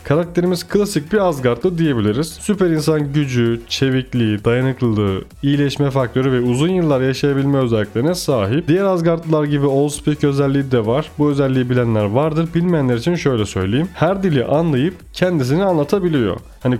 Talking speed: 140 wpm